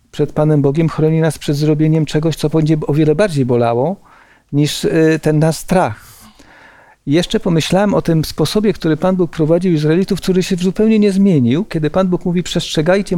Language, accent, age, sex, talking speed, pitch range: Polish, native, 40-59, male, 175 wpm, 150-190 Hz